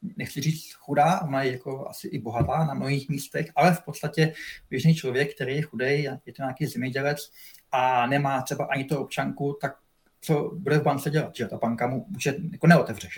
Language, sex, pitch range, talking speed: Slovak, male, 130-150 Hz, 190 wpm